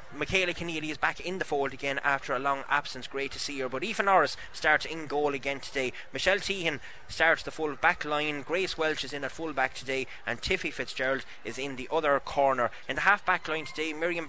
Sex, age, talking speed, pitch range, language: male, 20-39, 225 wpm, 135-170 Hz, English